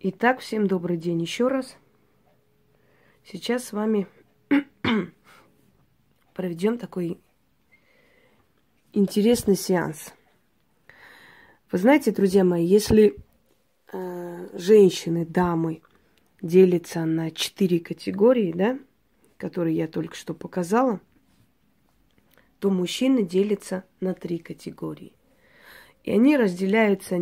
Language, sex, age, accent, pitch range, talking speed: Russian, female, 20-39, native, 180-220 Hz, 85 wpm